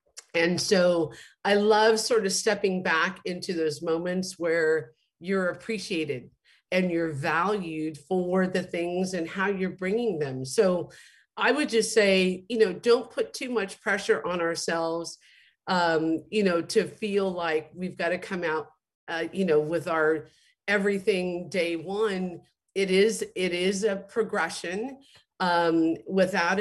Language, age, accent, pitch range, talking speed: English, 50-69, American, 170-205 Hz, 145 wpm